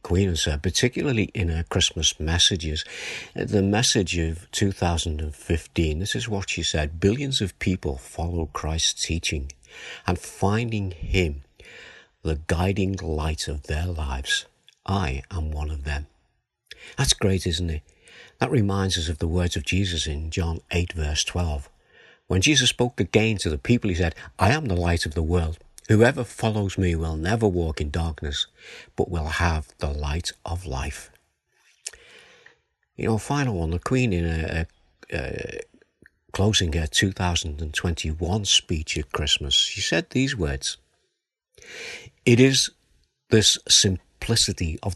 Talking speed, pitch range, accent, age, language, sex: 150 wpm, 80-105 Hz, British, 50-69, English, male